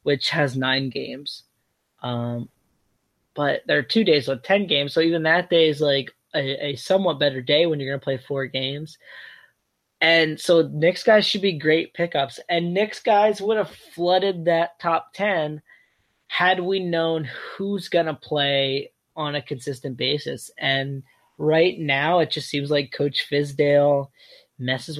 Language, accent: English, American